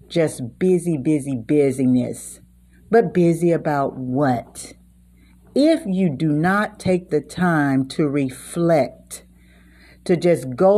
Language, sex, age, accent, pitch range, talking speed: English, female, 50-69, American, 125-180 Hz, 110 wpm